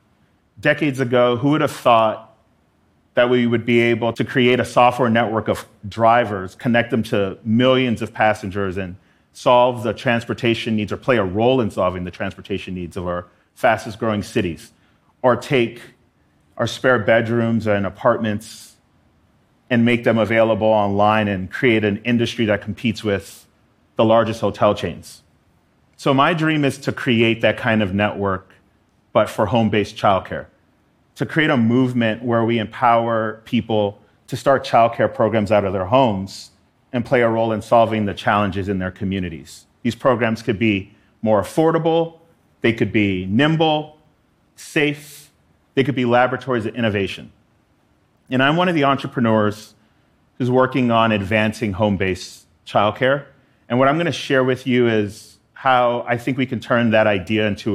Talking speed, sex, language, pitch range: 160 wpm, male, English, 105-125 Hz